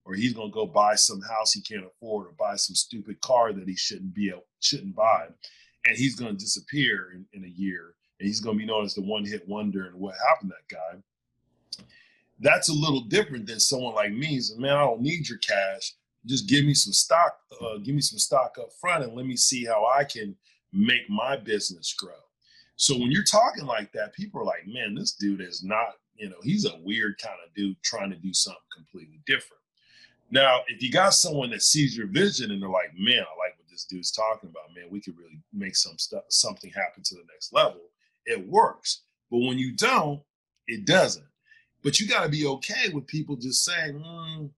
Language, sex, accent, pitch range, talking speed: English, male, American, 100-170 Hz, 225 wpm